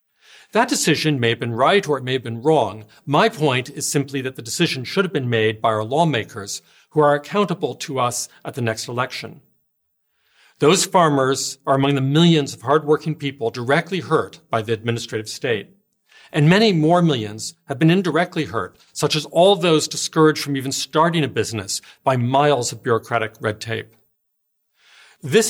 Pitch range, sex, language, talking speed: 120-160 Hz, male, English, 175 wpm